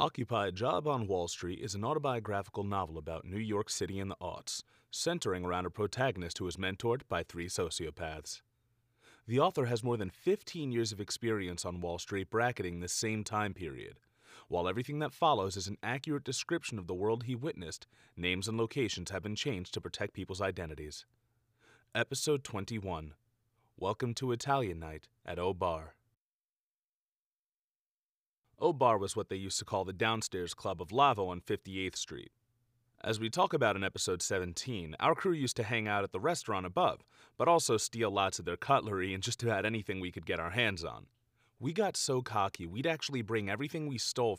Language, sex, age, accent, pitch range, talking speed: English, male, 30-49, American, 95-125 Hz, 180 wpm